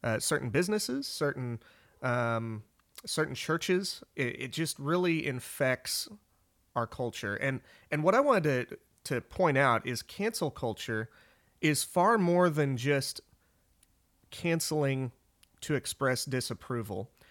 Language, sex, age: English, male, 30-49